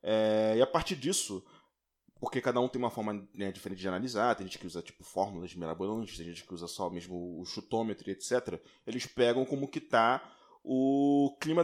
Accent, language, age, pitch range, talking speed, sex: Brazilian, Portuguese, 20-39, 100-155 Hz, 200 wpm, male